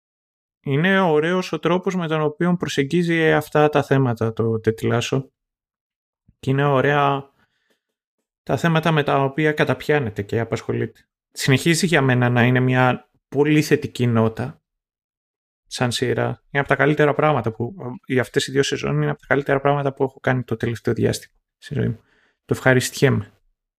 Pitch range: 125-150 Hz